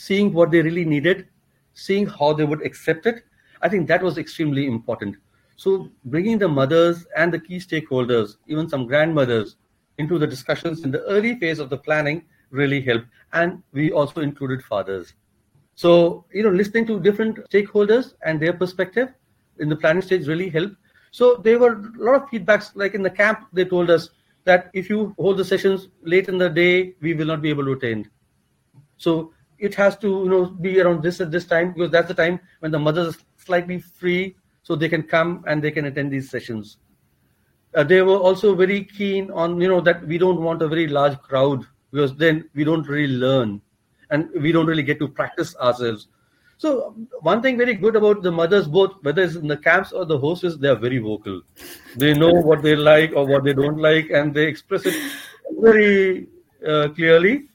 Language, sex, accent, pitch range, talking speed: English, male, Indian, 145-190 Hz, 200 wpm